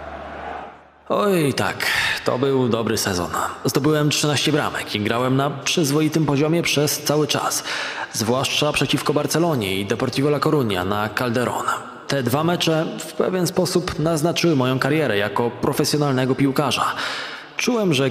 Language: Polish